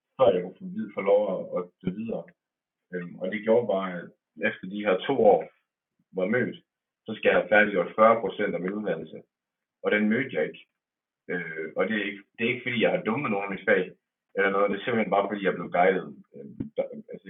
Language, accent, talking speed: Danish, native, 220 wpm